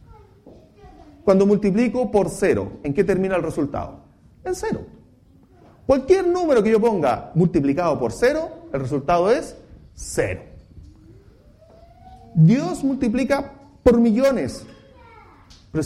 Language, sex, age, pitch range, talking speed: English, male, 40-59, 150-240 Hz, 105 wpm